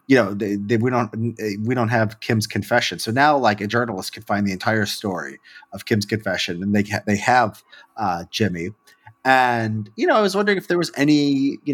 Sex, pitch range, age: male, 105-125 Hz, 30-49